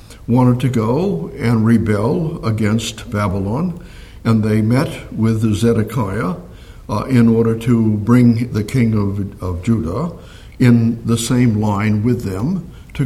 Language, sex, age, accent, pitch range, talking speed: English, male, 60-79, American, 105-130 Hz, 135 wpm